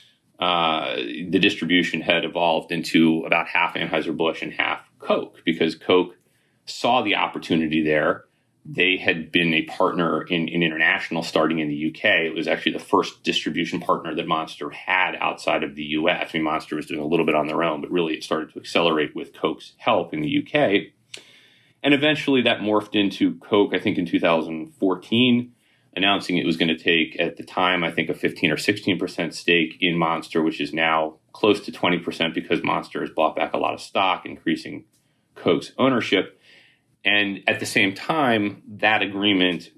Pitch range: 80-105 Hz